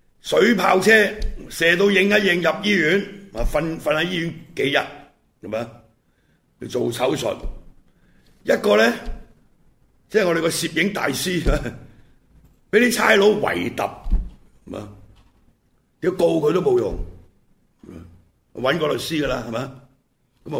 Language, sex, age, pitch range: Chinese, male, 60-79, 120-195 Hz